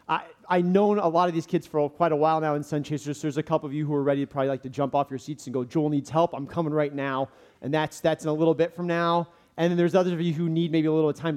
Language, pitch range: English, 150-185 Hz